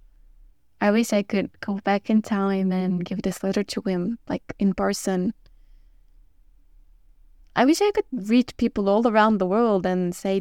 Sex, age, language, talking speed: female, 10-29, English, 165 wpm